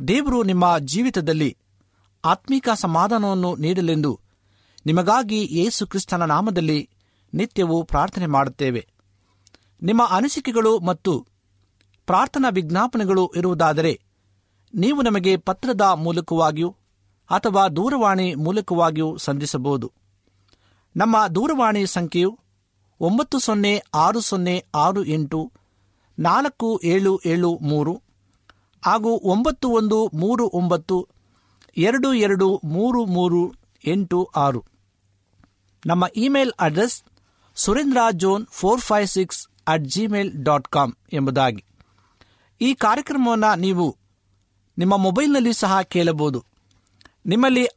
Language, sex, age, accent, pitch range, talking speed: Kannada, male, 60-79, native, 130-210 Hz, 80 wpm